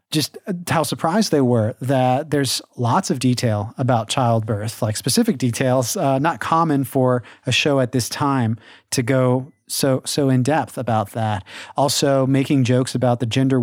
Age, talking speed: 30-49, 165 wpm